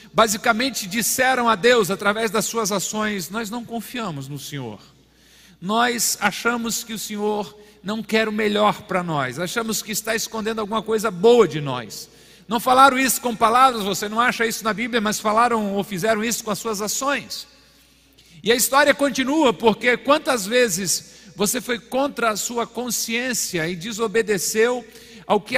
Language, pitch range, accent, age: Portuguese, 185-230 Hz, Brazilian, 50-69